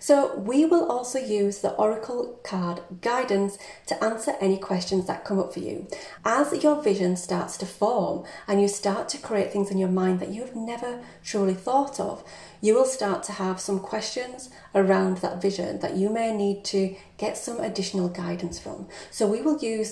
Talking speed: 190 wpm